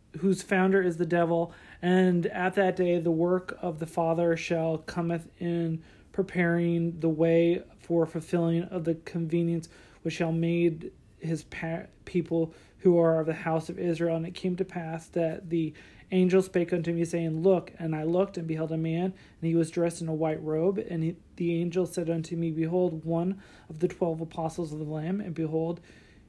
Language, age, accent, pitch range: English, 40-59, American, 165-180 Hz